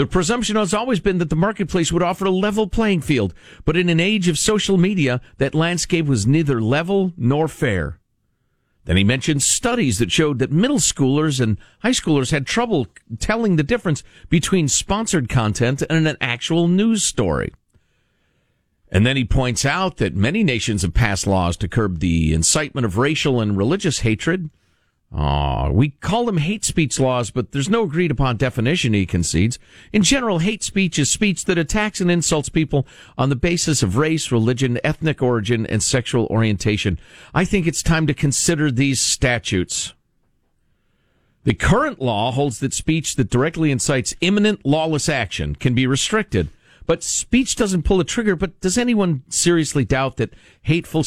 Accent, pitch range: American, 120-180 Hz